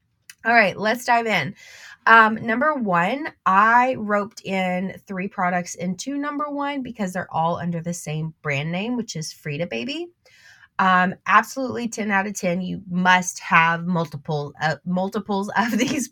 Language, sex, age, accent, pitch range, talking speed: English, female, 20-39, American, 170-230 Hz, 155 wpm